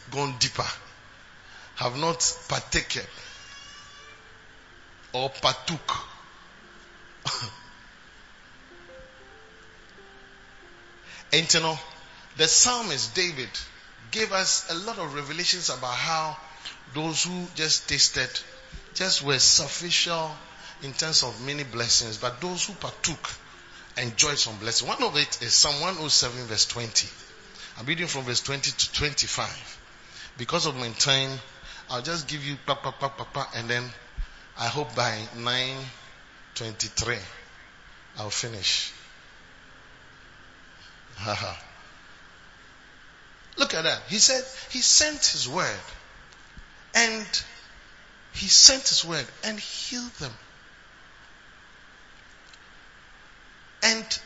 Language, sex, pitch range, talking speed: English, male, 120-175 Hz, 105 wpm